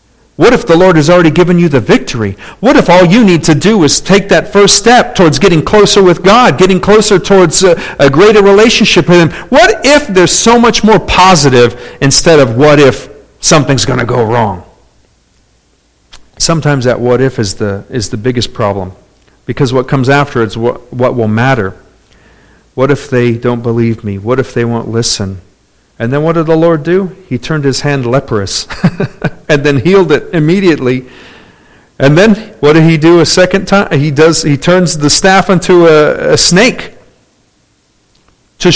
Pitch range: 135-190 Hz